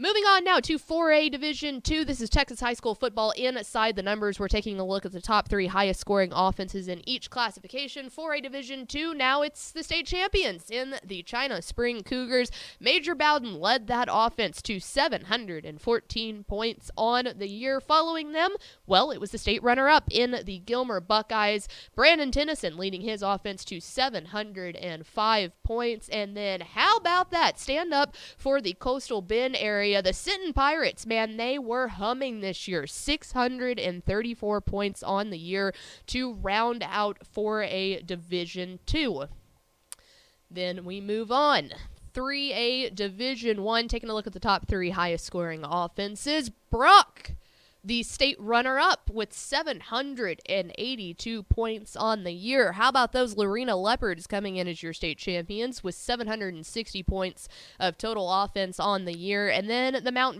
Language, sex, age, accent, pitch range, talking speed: English, female, 20-39, American, 195-255 Hz, 155 wpm